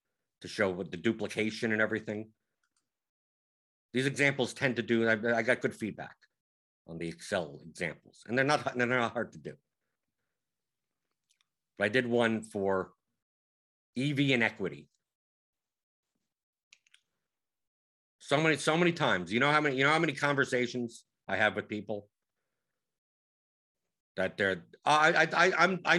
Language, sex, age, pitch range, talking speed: English, male, 50-69, 110-165 Hz, 135 wpm